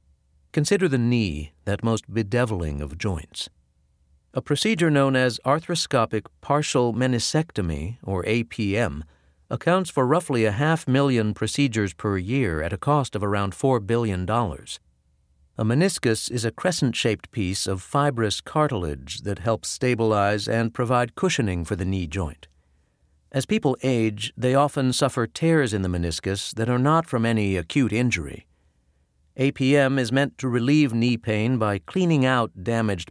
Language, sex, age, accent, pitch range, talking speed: English, male, 50-69, American, 90-130 Hz, 145 wpm